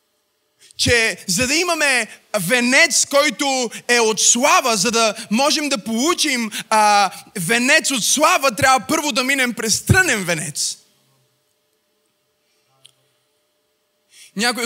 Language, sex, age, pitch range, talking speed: Bulgarian, male, 20-39, 200-235 Hz, 105 wpm